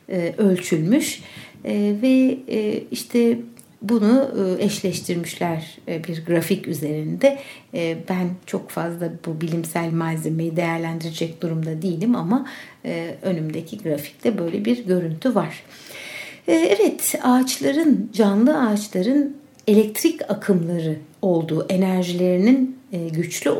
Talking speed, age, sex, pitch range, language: 85 wpm, 60-79, female, 170-245 Hz, Turkish